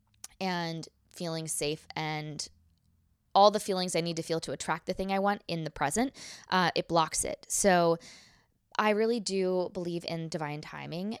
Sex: female